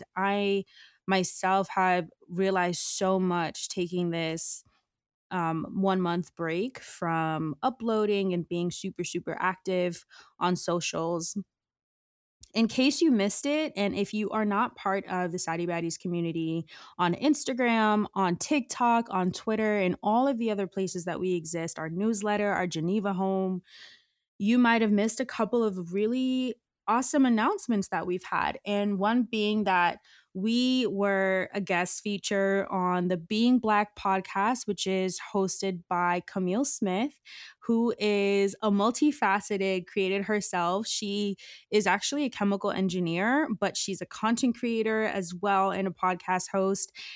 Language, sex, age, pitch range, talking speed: English, female, 20-39, 180-215 Hz, 145 wpm